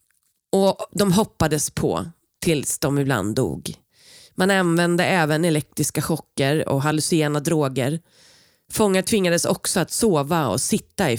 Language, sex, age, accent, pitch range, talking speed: Swedish, female, 30-49, native, 150-185 Hz, 130 wpm